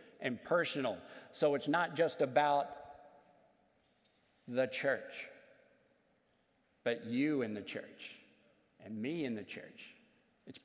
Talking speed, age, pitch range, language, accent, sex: 115 wpm, 50-69, 125-155 Hz, English, American, male